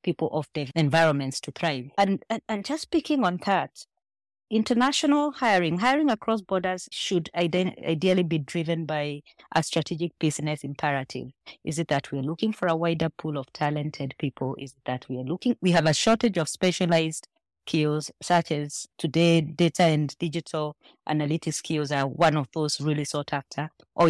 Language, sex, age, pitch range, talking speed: English, female, 30-49, 150-185 Hz, 170 wpm